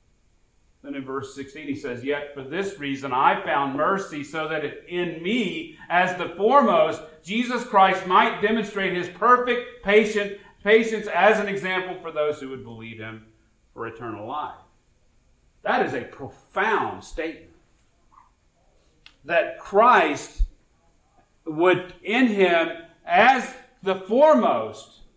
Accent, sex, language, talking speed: American, male, English, 125 wpm